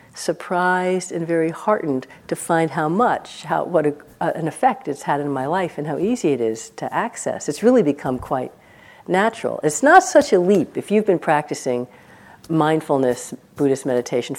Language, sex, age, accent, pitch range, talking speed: English, female, 50-69, American, 135-185 Hz, 180 wpm